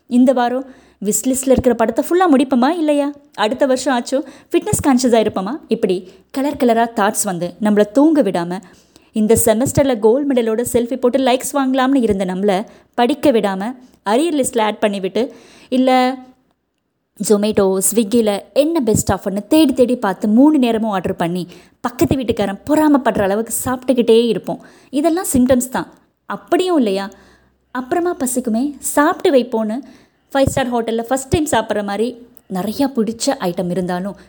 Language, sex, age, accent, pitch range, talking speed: Tamil, female, 20-39, native, 200-270 Hz, 135 wpm